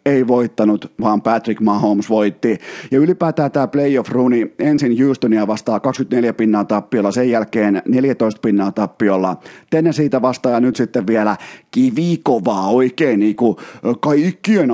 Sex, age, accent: male, 30-49, native